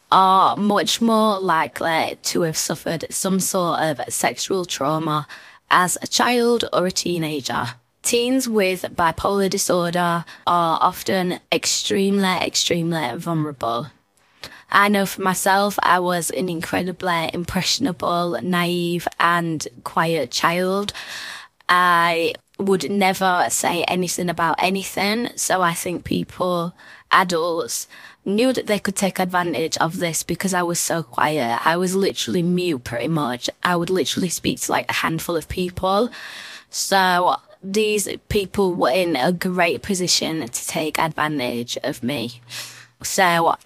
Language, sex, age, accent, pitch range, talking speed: English, female, 20-39, British, 165-195 Hz, 130 wpm